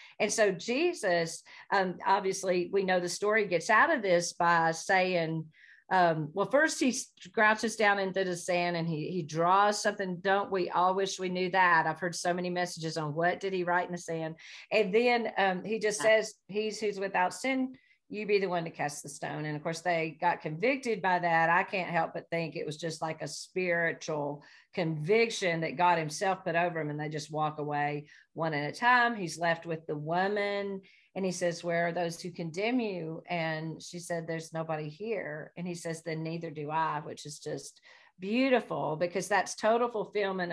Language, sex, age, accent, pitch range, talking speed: English, female, 40-59, American, 165-205 Hz, 205 wpm